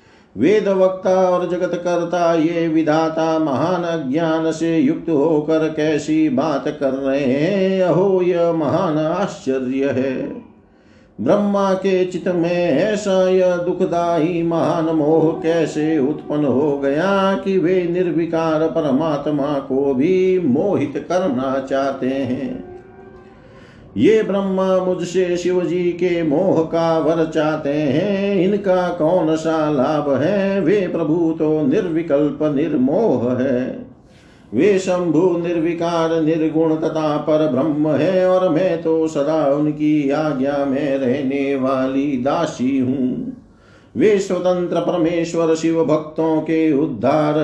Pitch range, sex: 150-180 Hz, male